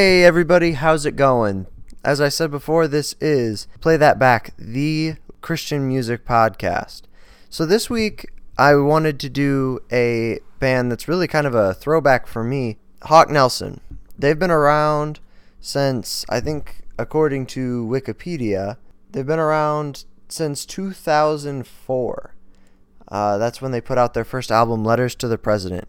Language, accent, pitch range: English, American, 105-145 Hz